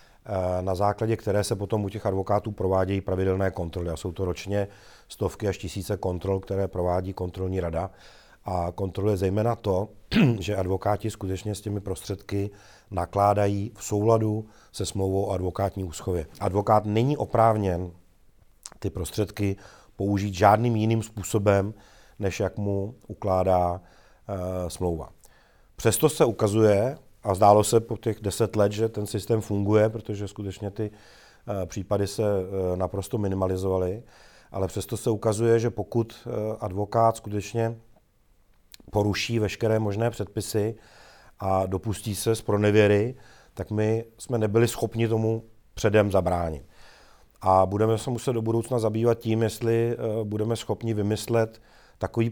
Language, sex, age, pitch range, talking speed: Czech, male, 40-59, 95-110 Hz, 135 wpm